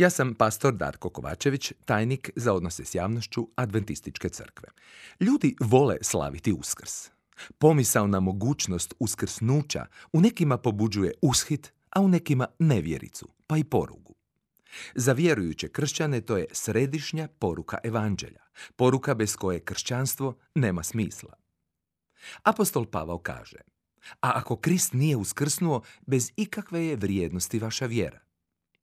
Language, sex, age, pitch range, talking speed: Croatian, male, 40-59, 100-145 Hz, 125 wpm